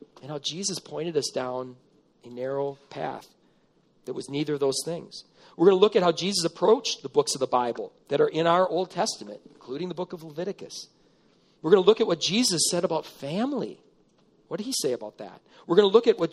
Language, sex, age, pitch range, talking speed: English, male, 40-59, 140-185 Hz, 225 wpm